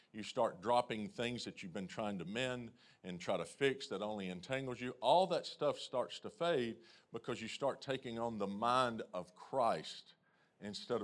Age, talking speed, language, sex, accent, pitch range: 40-59, 185 wpm, English, male, American, 115-150 Hz